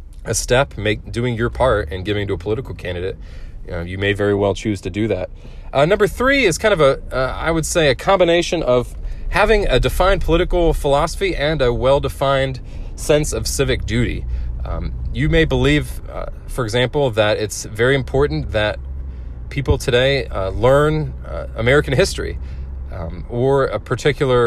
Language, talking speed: English, 170 wpm